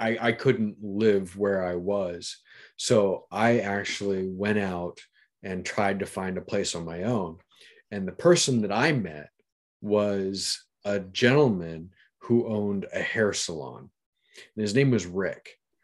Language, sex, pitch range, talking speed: English, male, 100-130 Hz, 150 wpm